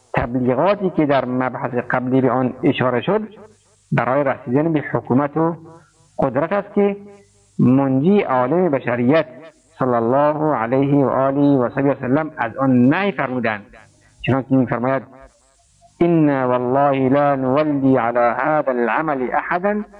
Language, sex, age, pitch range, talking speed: Persian, male, 50-69, 125-160 Hz, 125 wpm